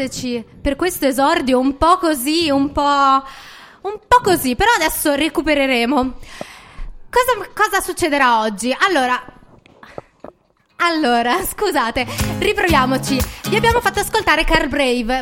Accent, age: native, 20-39